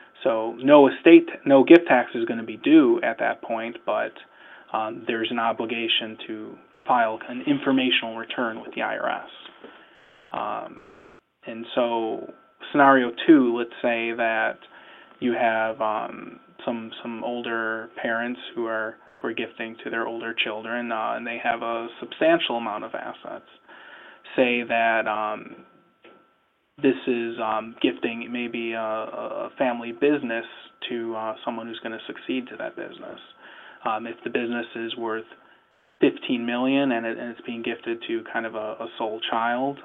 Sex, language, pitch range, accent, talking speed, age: male, English, 115-125 Hz, American, 155 wpm, 20-39